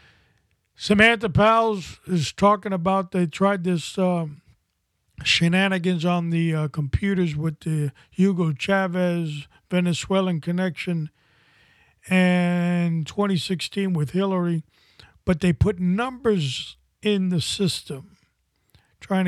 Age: 50-69